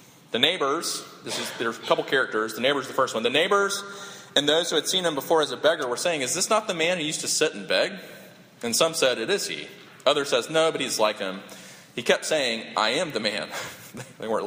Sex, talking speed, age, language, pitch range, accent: male, 240 wpm, 30-49, English, 110-160 Hz, American